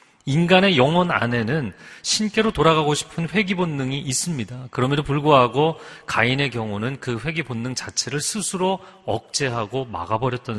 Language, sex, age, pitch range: Korean, male, 40-59, 115-155 Hz